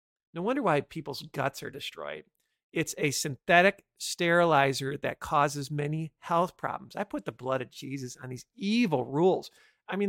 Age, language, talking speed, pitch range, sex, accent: 50-69, English, 165 wpm, 140-170 Hz, male, American